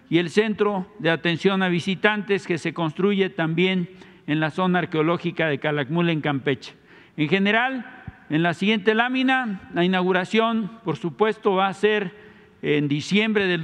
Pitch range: 175-215 Hz